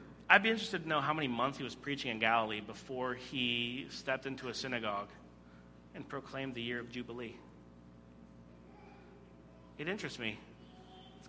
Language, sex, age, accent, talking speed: English, male, 40-59, American, 155 wpm